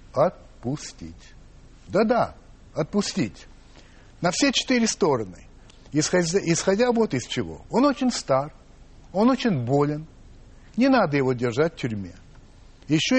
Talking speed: 115 wpm